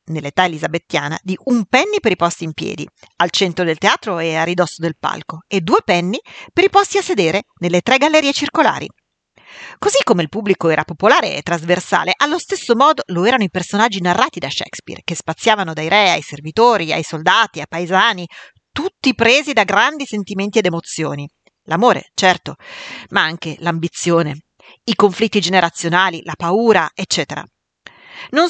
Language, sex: Italian, female